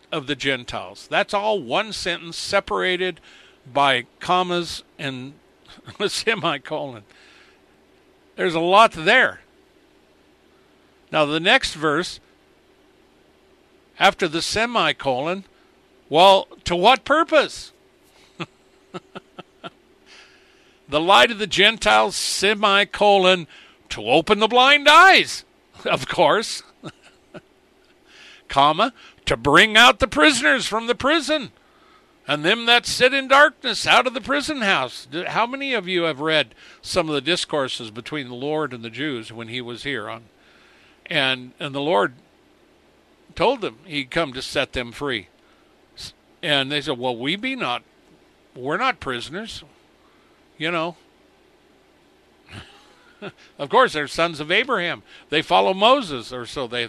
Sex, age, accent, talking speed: male, 60-79, American, 125 wpm